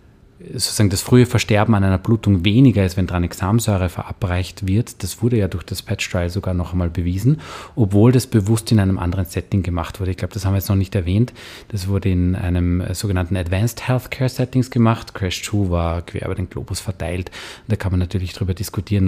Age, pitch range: 30-49, 90-105 Hz